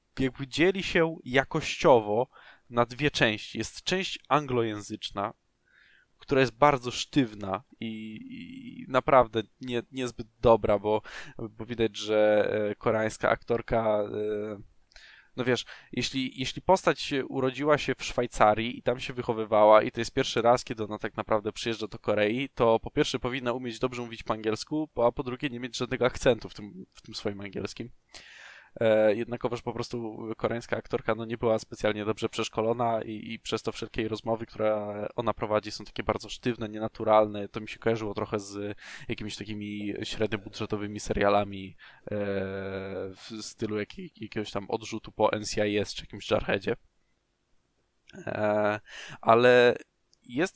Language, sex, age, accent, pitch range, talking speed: Polish, male, 20-39, native, 105-125 Hz, 145 wpm